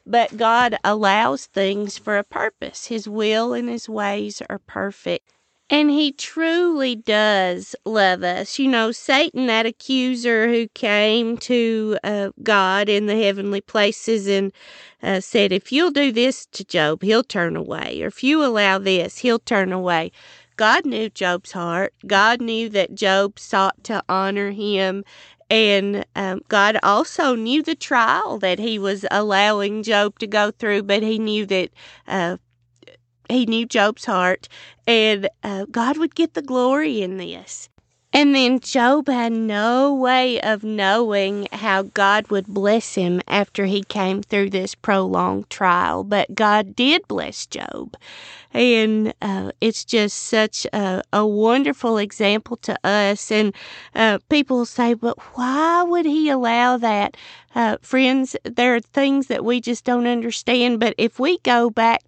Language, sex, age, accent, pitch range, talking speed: English, female, 40-59, American, 200-245 Hz, 155 wpm